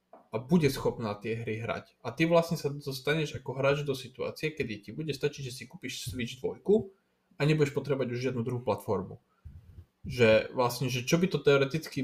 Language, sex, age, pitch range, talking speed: Slovak, male, 20-39, 115-145 Hz, 190 wpm